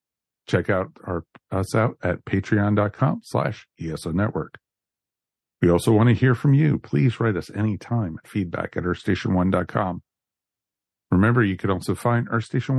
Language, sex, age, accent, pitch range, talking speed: English, male, 50-69, American, 95-120 Hz, 150 wpm